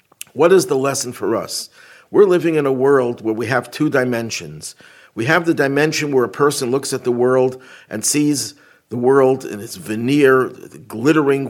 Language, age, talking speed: English, 50-69, 185 wpm